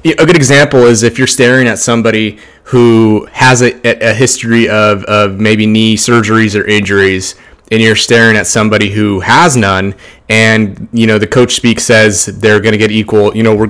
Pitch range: 105-125 Hz